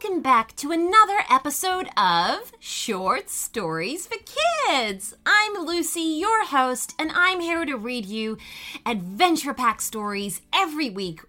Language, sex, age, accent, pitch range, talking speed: English, female, 30-49, American, 210-345 Hz, 135 wpm